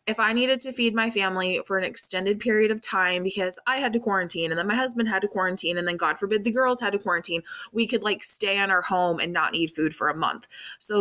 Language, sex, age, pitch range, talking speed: English, female, 20-39, 170-200 Hz, 265 wpm